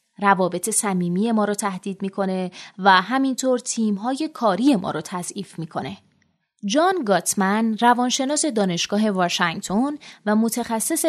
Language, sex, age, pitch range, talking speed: Persian, female, 20-39, 185-255 Hz, 120 wpm